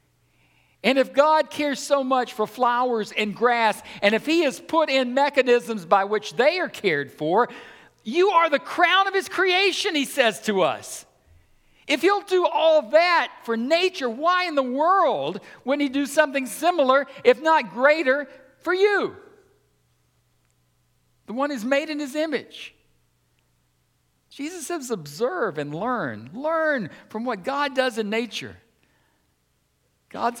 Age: 60-79